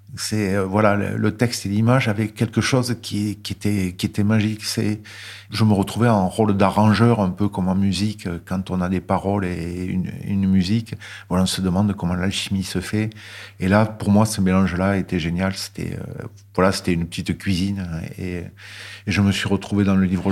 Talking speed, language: 210 wpm, French